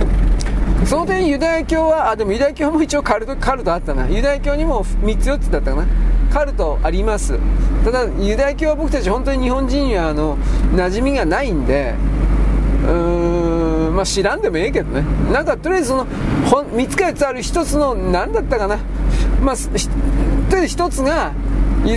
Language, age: Japanese, 40-59